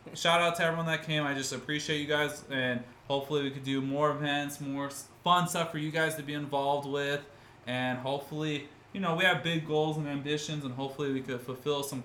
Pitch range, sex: 130-150 Hz, male